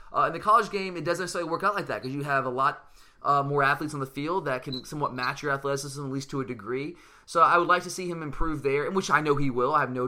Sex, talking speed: male, 305 wpm